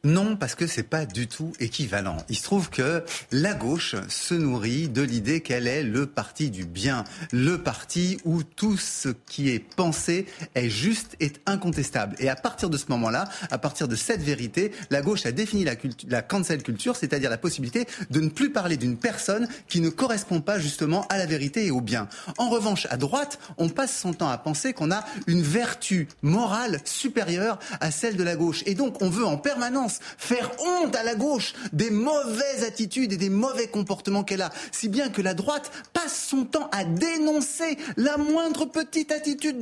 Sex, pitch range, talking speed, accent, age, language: male, 155-240 Hz, 200 wpm, French, 30-49, French